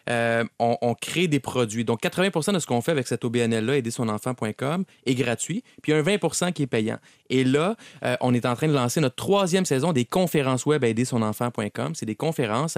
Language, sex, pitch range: French, male, 115-145 Hz